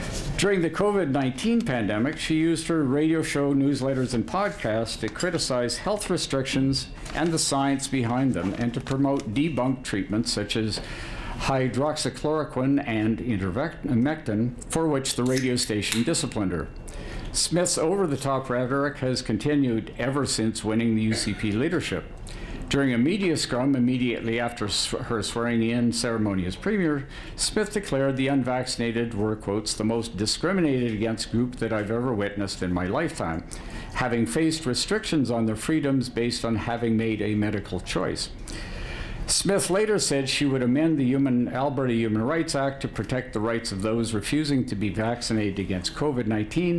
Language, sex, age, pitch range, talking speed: English, male, 60-79, 110-145 Hz, 145 wpm